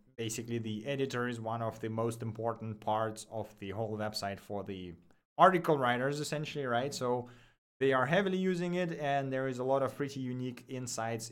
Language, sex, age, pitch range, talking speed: English, male, 30-49, 115-155 Hz, 185 wpm